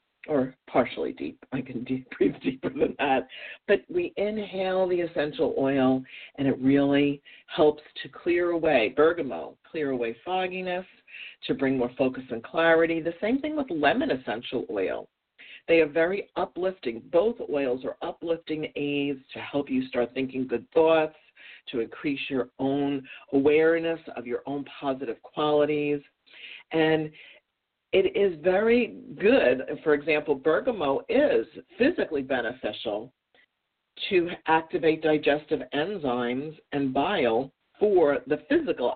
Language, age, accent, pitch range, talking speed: English, 50-69, American, 135-170 Hz, 130 wpm